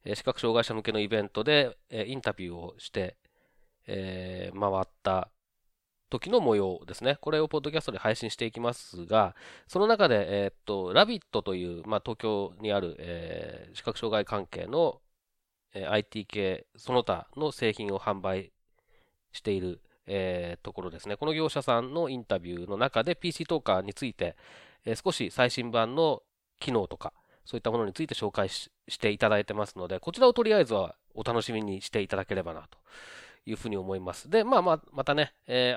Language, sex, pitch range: Japanese, male, 100-155 Hz